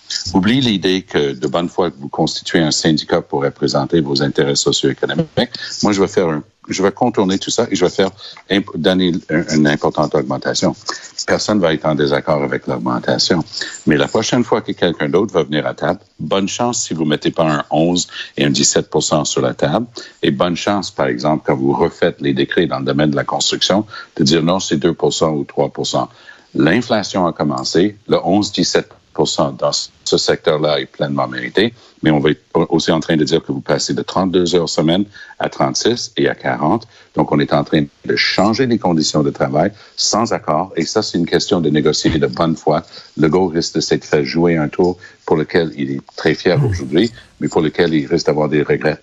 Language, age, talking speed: French, 60-79, 215 wpm